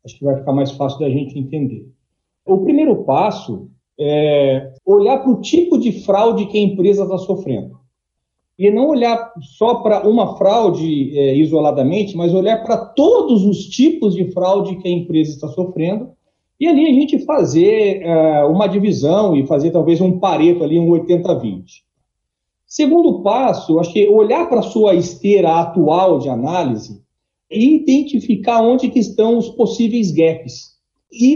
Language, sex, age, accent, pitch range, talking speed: Portuguese, male, 40-59, Brazilian, 160-240 Hz, 160 wpm